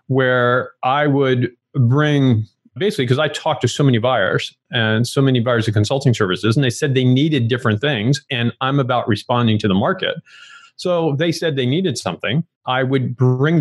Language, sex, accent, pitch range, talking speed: English, male, American, 115-150 Hz, 185 wpm